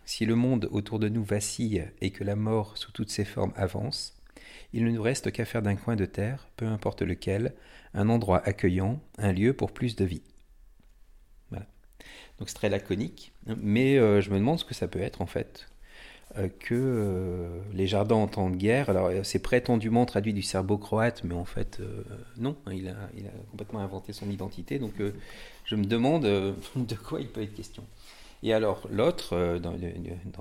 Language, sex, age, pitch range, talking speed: French, male, 40-59, 95-115 Hz, 195 wpm